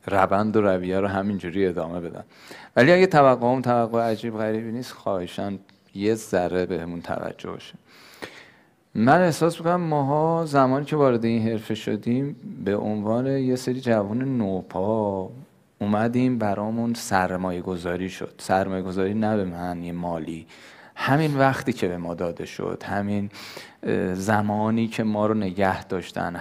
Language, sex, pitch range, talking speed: Persian, male, 95-125 Hz, 145 wpm